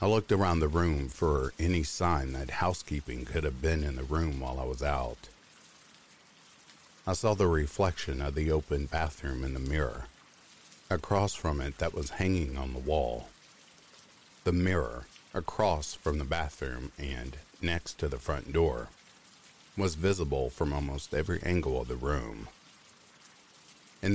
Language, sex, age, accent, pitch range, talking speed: English, male, 50-69, American, 70-90 Hz, 155 wpm